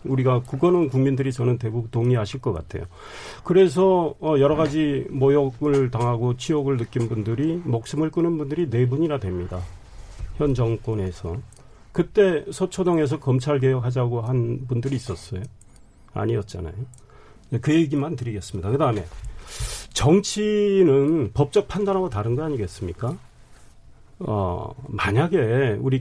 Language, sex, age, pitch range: Korean, male, 40-59, 120-165 Hz